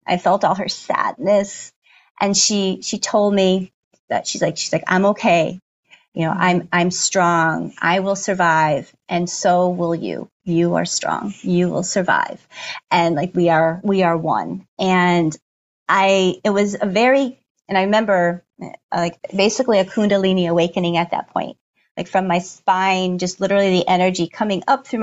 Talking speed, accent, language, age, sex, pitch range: 170 wpm, American, English, 30-49, female, 175-205 Hz